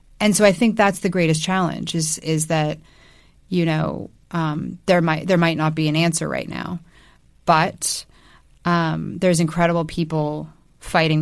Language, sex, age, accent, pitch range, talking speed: English, female, 20-39, American, 150-170 Hz, 160 wpm